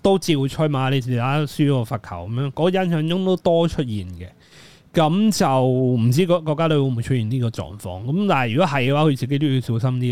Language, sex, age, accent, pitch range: Chinese, male, 20-39, native, 115-155 Hz